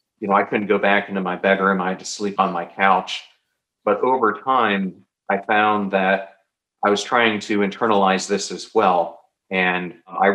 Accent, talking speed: American, 185 wpm